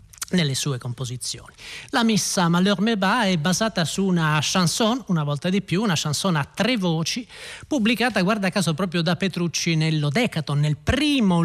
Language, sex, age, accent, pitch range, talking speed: Italian, male, 30-49, native, 150-190 Hz, 155 wpm